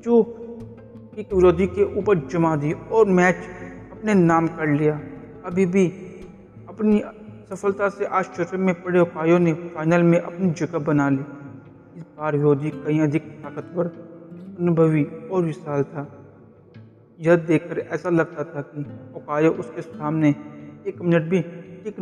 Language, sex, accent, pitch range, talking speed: Hindi, male, native, 145-175 Hz, 145 wpm